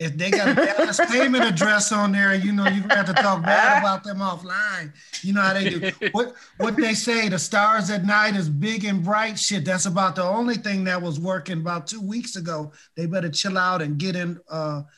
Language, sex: English, male